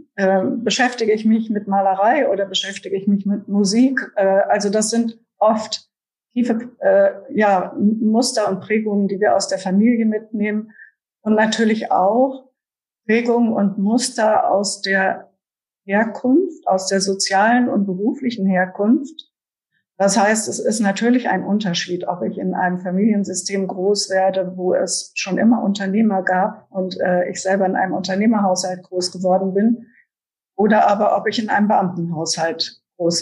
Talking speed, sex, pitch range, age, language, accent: 145 wpm, female, 190-230 Hz, 50-69, German, German